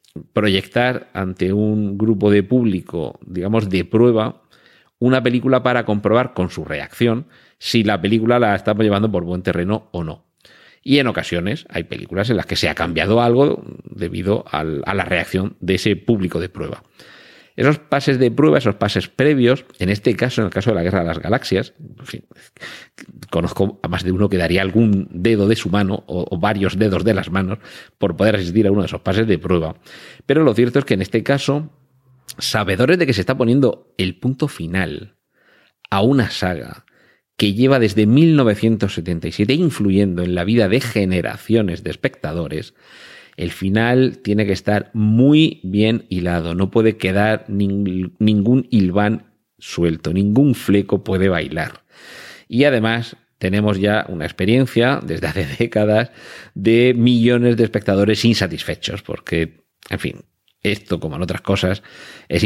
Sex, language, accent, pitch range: male, Spanish, Spanish, 95-115 Hz